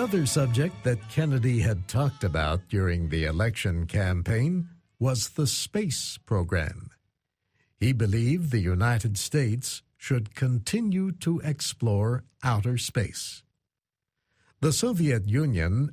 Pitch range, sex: 100-140 Hz, male